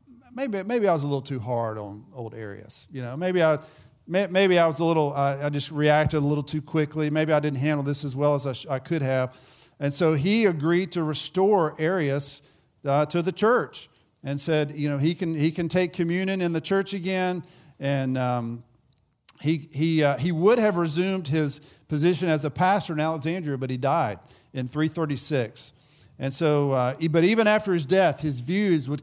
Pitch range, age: 140-175 Hz, 40-59